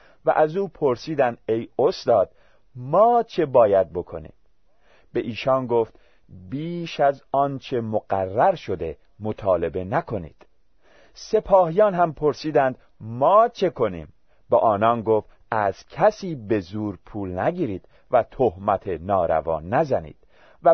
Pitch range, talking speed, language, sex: 105-165 Hz, 115 wpm, Persian, male